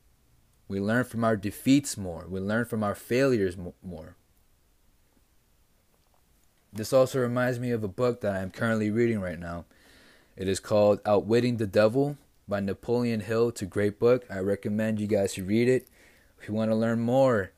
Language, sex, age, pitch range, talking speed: English, male, 20-39, 90-115 Hz, 180 wpm